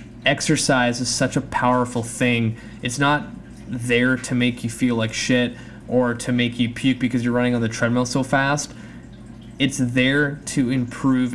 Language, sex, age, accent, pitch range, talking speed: English, male, 20-39, American, 115-125 Hz, 170 wpm